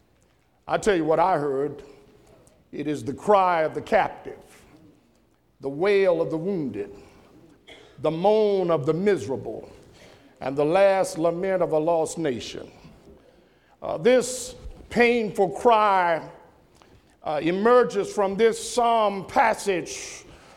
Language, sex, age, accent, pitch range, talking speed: English, male, 50-69, American, 180-245 Hz, 120 wpm